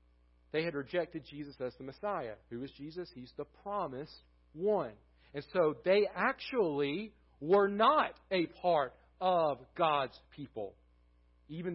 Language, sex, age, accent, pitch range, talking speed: English, male, 40-59, American, 155-215 Hz, 135 wpm